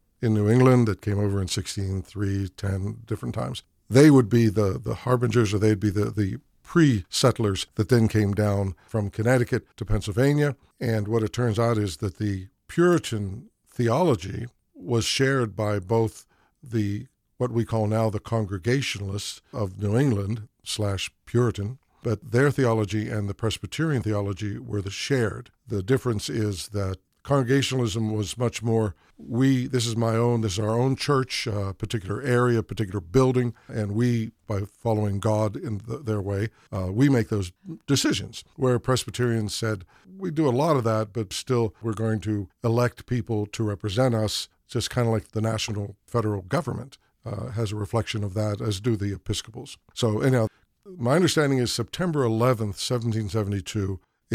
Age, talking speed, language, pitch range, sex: 60-79, 165 wpm, English, 105-125 Hz, male